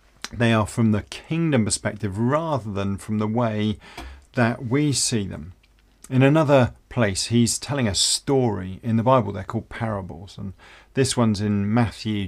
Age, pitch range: 40-59, 105-125 Hz